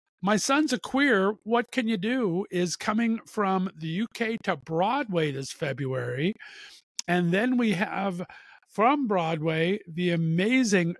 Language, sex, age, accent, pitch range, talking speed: English, male, 50-69, American, 180-250 Hz, 135 wpm